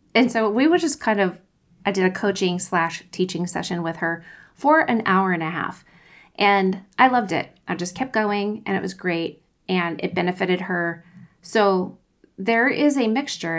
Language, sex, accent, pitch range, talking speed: English, female, American, 175-225 Hz, 190 wpm